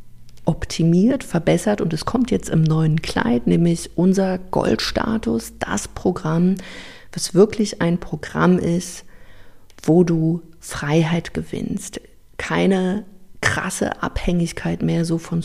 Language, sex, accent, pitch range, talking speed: German, female, German, 160-210 Hz, 115 wpm